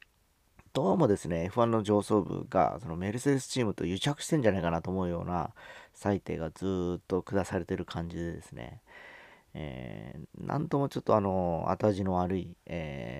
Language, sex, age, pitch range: Japanese, male, 40-59, 85-110 Hz